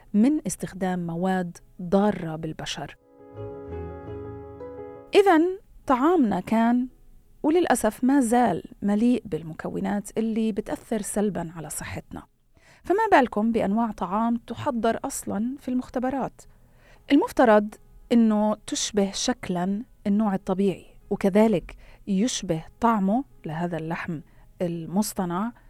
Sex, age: female, 30-49